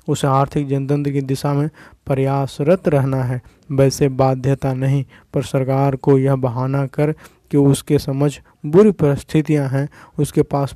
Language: Hindi